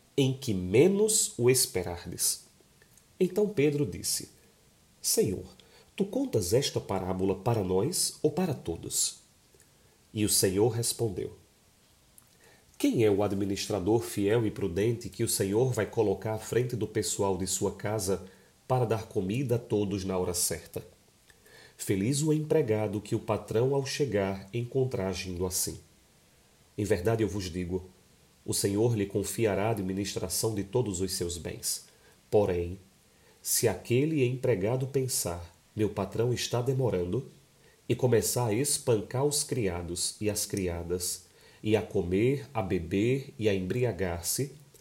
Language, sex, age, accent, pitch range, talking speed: Portuguese, male, 40-59, Brazilian, 95-130 Hz, 135 wpm